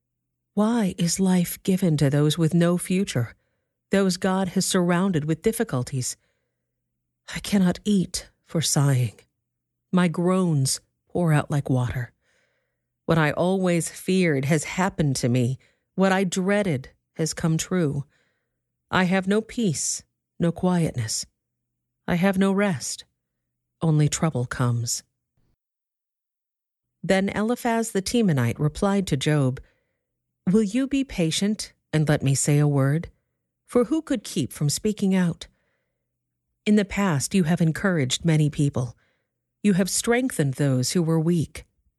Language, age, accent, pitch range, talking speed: English, 50-69, American, 130-190 Hz, 130 wpm